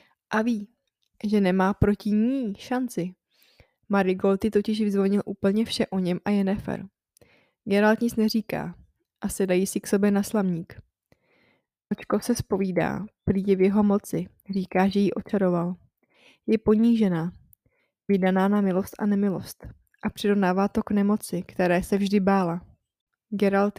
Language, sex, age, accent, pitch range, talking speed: Czech, female, 20-39, native, 190-215 Hz, 140 wpm